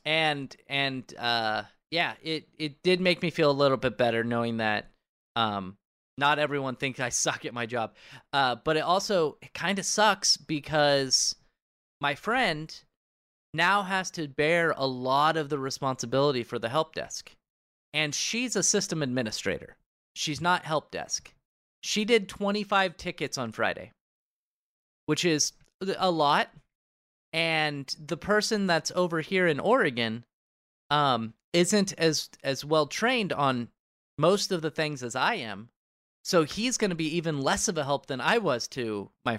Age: 30-49